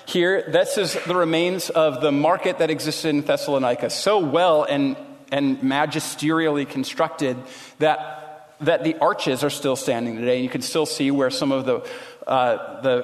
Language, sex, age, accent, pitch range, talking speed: English, male, 40-59, American, 140-175 Hz, 170 wpm